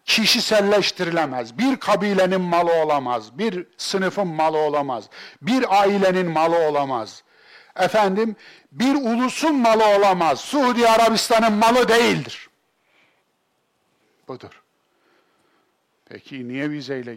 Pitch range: 135-215 Hz